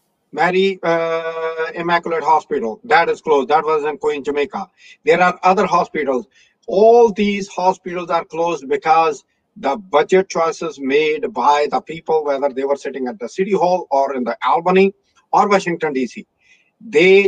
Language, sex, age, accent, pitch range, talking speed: English, male, 50-69, Indian, 150-200 Hz, 155 wpm